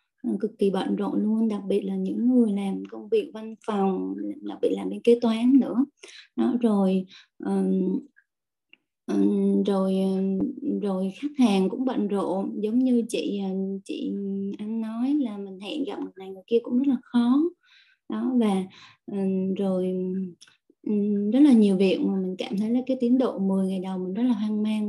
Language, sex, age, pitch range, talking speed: Vietnamese, female, 20-39, 190-245 Hz, 175 wpm